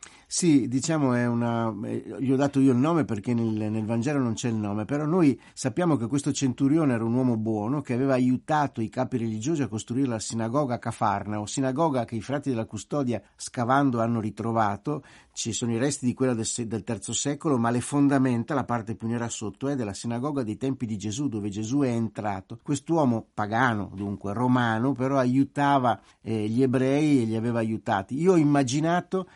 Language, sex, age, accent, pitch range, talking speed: Italian, male, 50-69, native, 115-140 Hz, 195 wpm